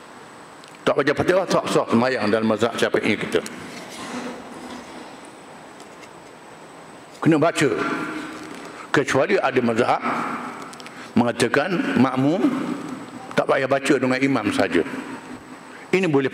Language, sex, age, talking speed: Malay, male, 60-79, 90 wpm